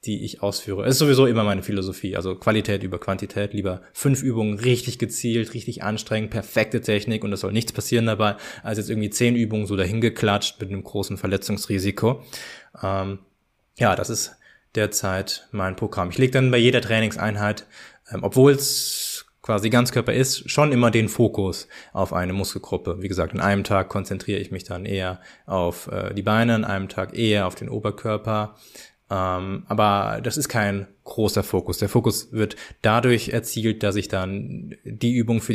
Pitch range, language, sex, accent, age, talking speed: 100-115 Hz, German, male, German, 20-39, 175 wpm